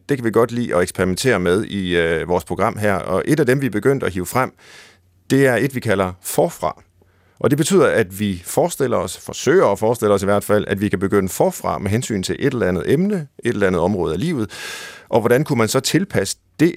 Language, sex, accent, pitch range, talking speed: Danish, male, native, 95-130 Hz, 245 wpm